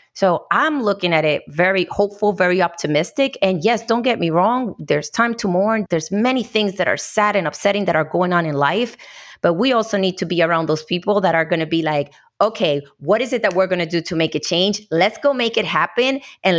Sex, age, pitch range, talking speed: female, 30-49, 165-225 Hz, 240 wpm